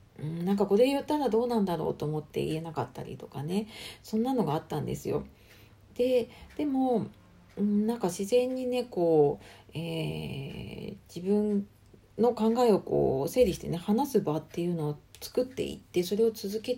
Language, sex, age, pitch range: Japanese, female, 40-59, 160-230 Hz